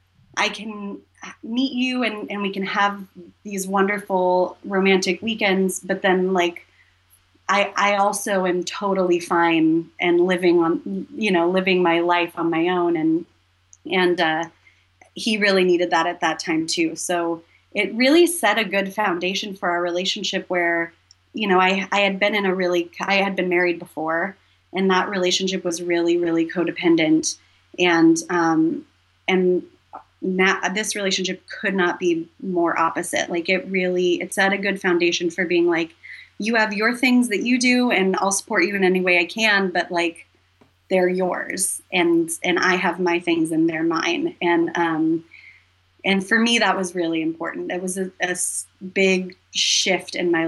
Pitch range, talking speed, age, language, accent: 170-200 Hz, 170 wpm, 30-49, English, American